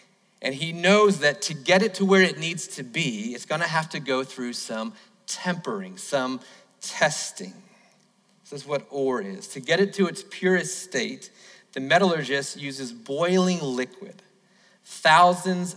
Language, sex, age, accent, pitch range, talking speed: English, male, 30-49, American, 145-195 Hz, 160 wpm